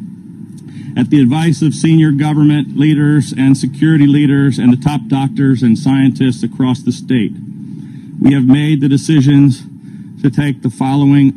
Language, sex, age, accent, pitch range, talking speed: English, male, 50-69, American, 135-155 Hz, 150 wpm